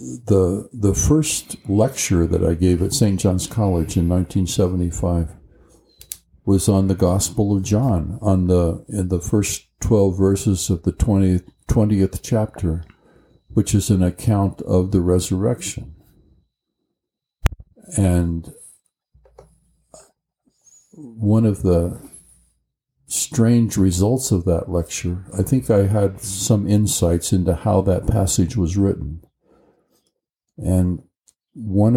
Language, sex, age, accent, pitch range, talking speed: English, male, 60-79, American, 90-105 Hz, 115 wpm